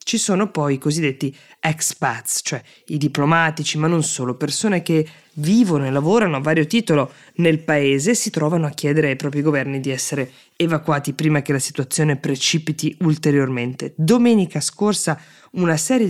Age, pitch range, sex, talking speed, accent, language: 20-39, 135-155 Hz, female, 160 wpm, native, Italian